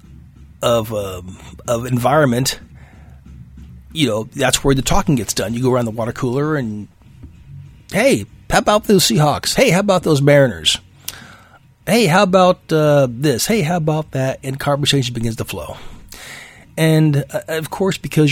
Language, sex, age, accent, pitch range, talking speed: English, male, 40-59, American, 115-140 Hz, 155 wpm